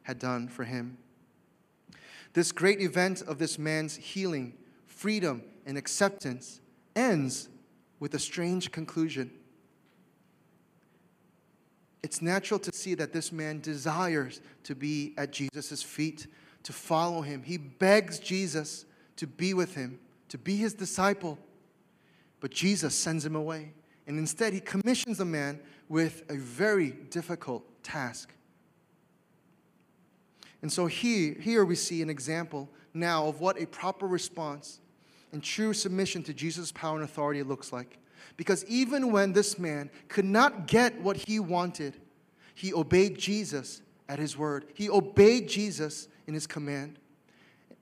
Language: English